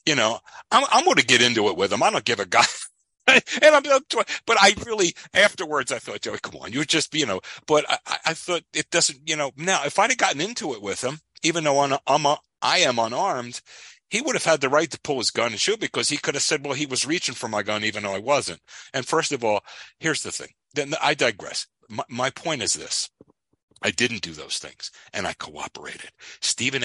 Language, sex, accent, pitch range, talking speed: English, male, American, 115-155 Hz, 250 wpm